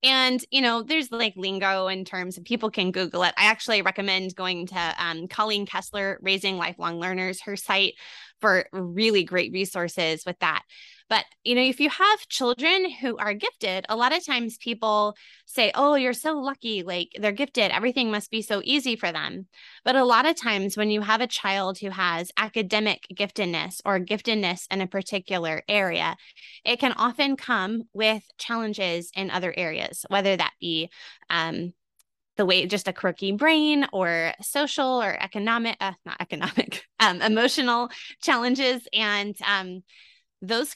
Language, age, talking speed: English, 20-39, 170 wpm